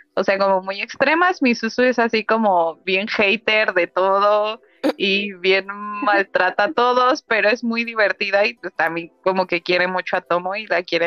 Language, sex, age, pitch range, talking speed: Spanish, female, 20-39, 185-225 Hz, 190 wpm